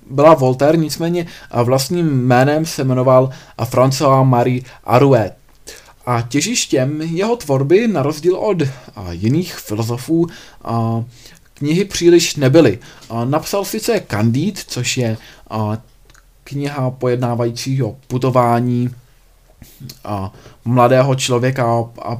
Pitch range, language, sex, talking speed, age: 120-145 Hz, Czech, male, 90 wpm, 20-39